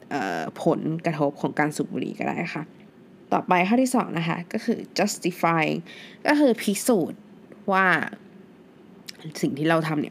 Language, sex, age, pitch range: Thai, female, 20-39, 165-210 Hz